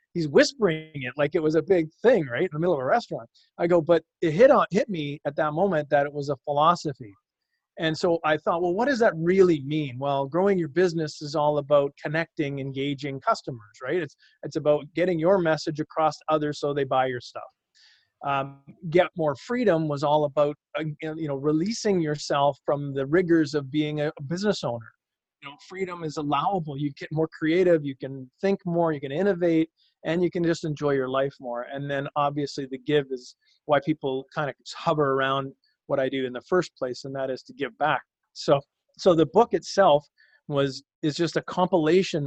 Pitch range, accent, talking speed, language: 140-170 Hz, American, 205 wpm, English